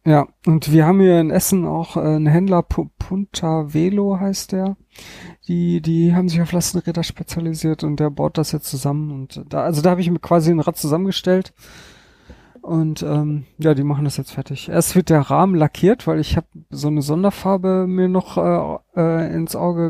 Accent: German